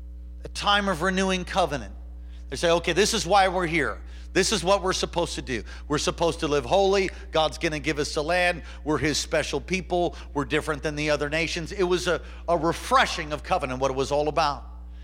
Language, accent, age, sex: English, American, 50-69, male